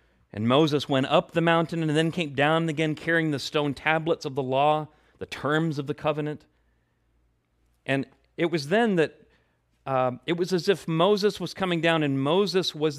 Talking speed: 185 wpm